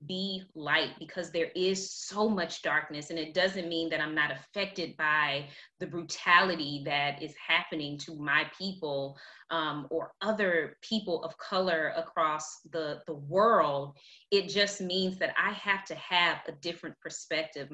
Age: 20-39